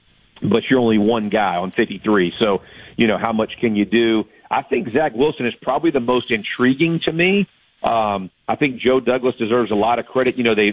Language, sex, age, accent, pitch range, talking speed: English, male, 40-59, American, 110-125 Hz, 220 wpm